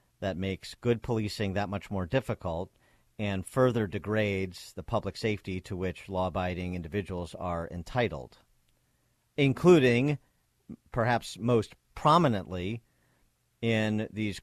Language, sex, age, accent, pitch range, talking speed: English, male, 50-69, American, 95-115 Hz, 110 wpm